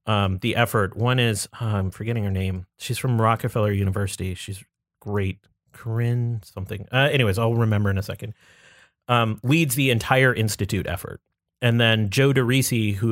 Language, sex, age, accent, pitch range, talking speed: English, male, 30-49, American, 100-120 Hz, 165 wpm